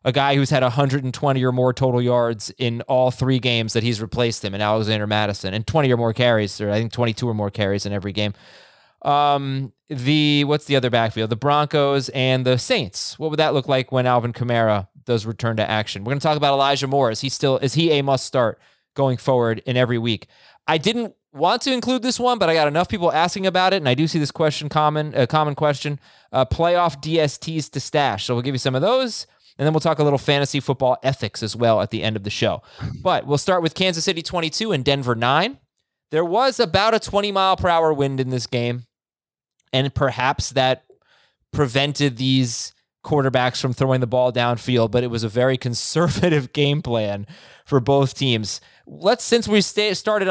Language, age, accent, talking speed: English, 20-39, American, 215 wpm